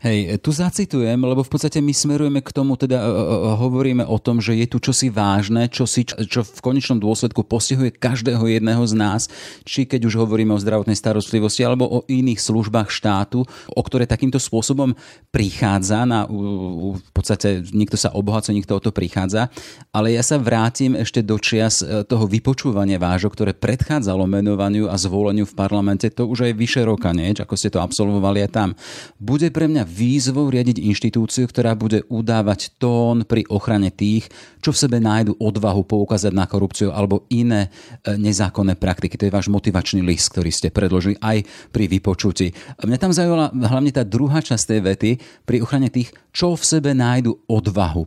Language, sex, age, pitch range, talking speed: Slovak, male, 40-59, 100-125 Hz, 175 wpm